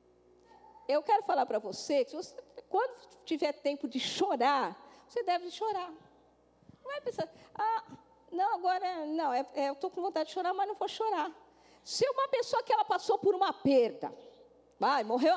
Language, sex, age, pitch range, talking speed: Portuguese, female, 50-69, 280-420 Hz, 180 wpm